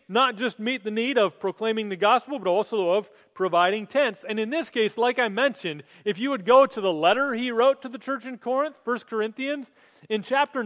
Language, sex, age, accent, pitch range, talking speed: English, male, 30-49, American, 185-265 Hz, 220 wpm